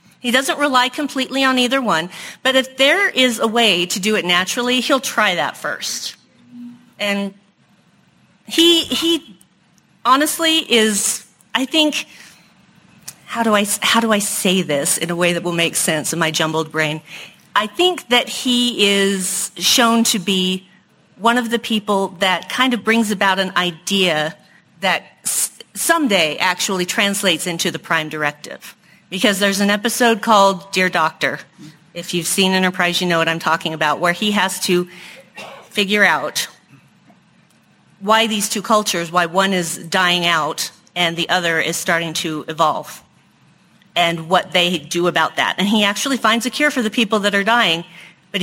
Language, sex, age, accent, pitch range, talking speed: English, female, 40-59, American, 175-225 Hz, 165 wpm